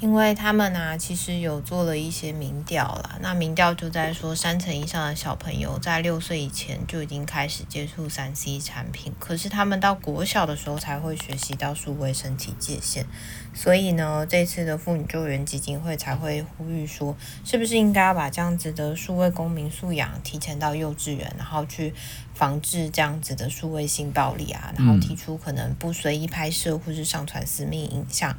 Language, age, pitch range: Chinese, 20-39, 140-170 Hz